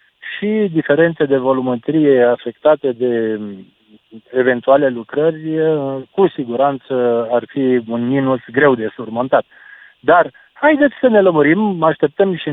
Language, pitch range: Romanian, 120-155 Hz